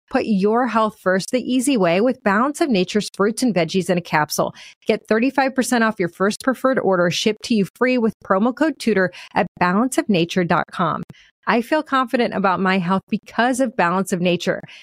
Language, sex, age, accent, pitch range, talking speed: English, female, 30-49, American, 195-260 Hz, 180 wpm